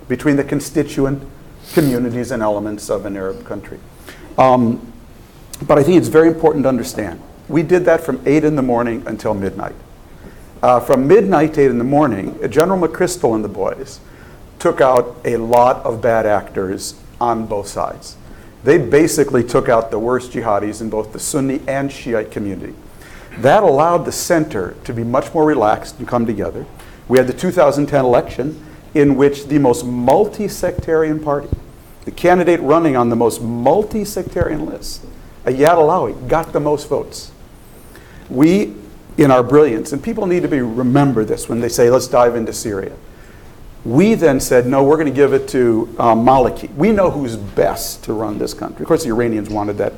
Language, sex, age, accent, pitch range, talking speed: English, male, 50-69, American, 115-150 Hz, 175 wpm